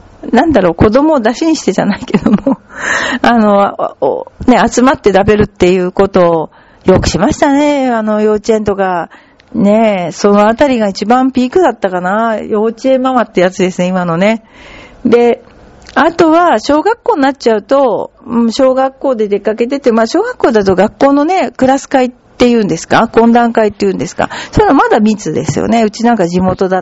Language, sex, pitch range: Japanese, female, 190-255 Hz